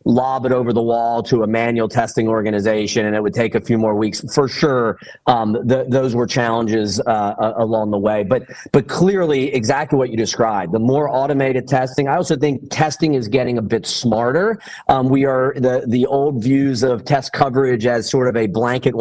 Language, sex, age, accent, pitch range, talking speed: English, male, 30-49, American, 115-135 Hz, 205 wpm